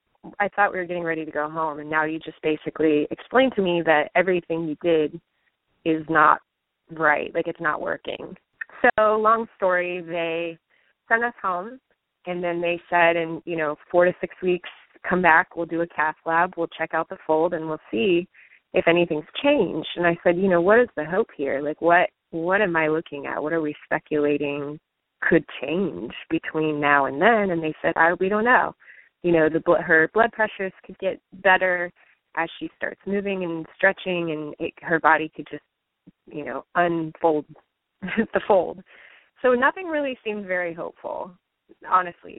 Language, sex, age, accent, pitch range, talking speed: English, female, 20-39, American, 160-190 Hz, 185 wpm